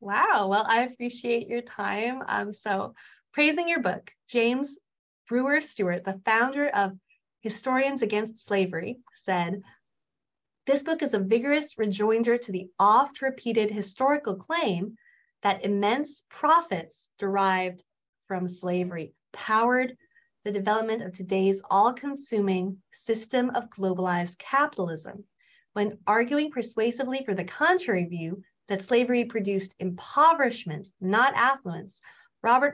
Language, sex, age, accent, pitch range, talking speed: English, female, 30-49, American, 185-240 Hz, 115 wpm